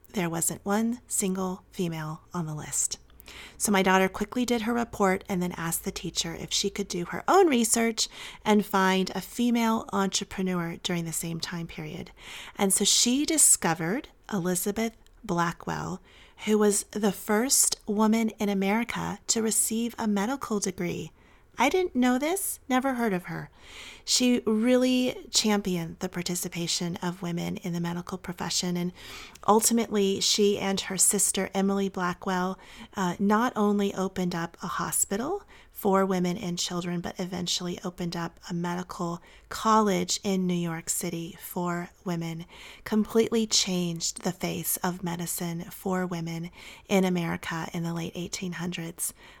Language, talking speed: English, 145 wpm